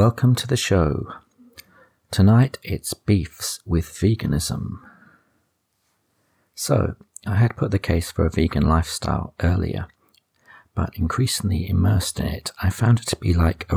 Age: 50-69